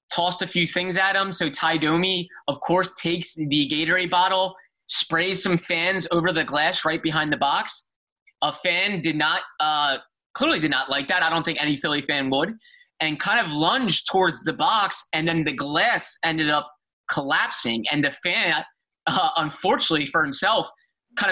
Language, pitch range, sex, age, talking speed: English, 150-185 Hz, male, 20-39, 185 wpm